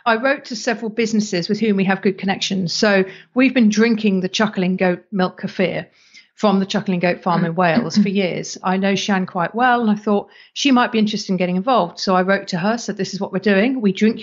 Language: English